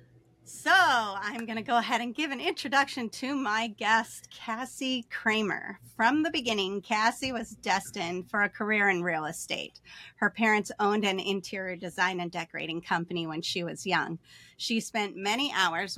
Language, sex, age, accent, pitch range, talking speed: English, female, 30-49, American, 185-235 Hz, 165 wpm